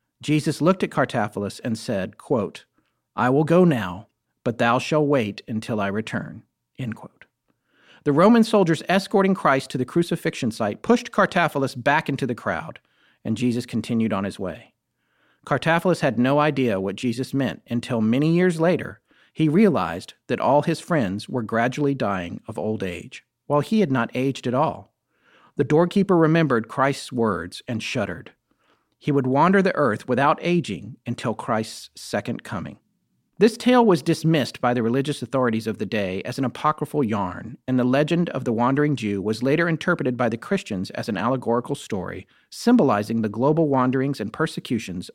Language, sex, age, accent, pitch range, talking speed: English, male, 50-69, American, 115-160 Hz, 170 wpm